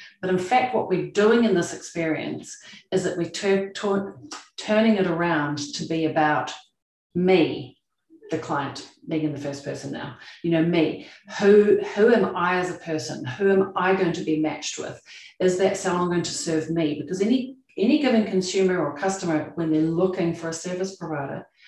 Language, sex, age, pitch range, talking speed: English, female, 40-59, 155-195 Hz, 190 wpm